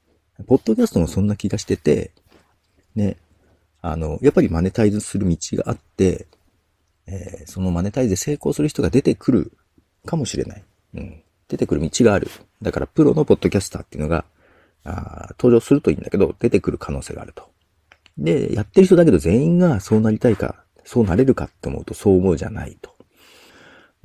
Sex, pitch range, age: male, 85-130 Hz, 40-59